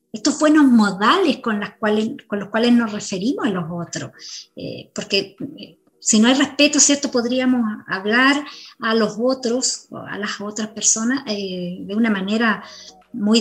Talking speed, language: 160 wpm, Spanish